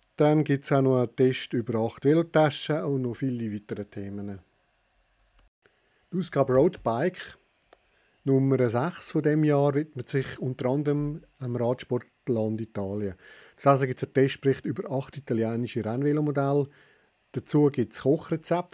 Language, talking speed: German, 135 wpm